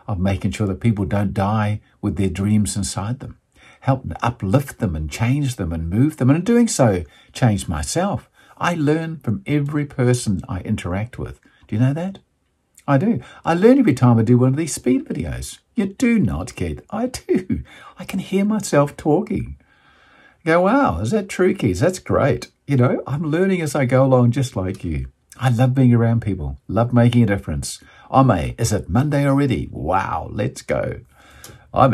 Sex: male